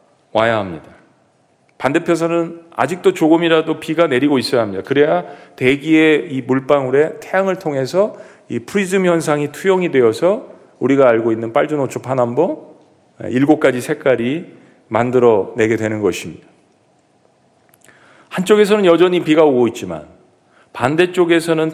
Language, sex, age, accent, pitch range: Korean, male, 40-59, native, 125-170 Hz